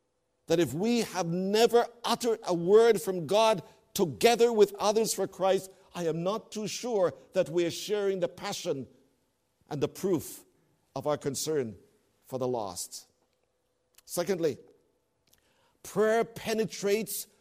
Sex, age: male, 50-69